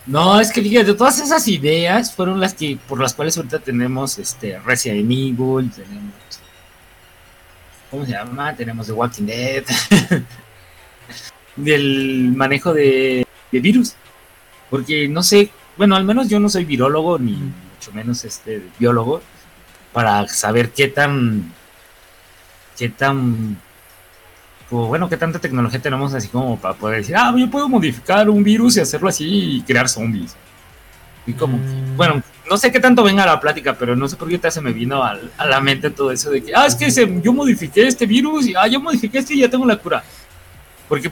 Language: Spanish